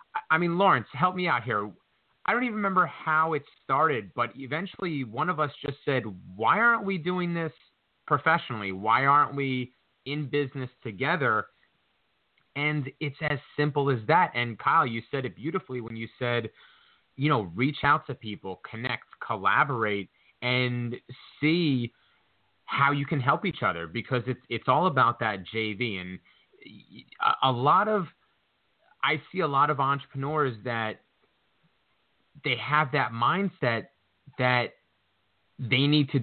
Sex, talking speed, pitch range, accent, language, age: male, 150 wpm, 115-155 Hz, American, English, 30-49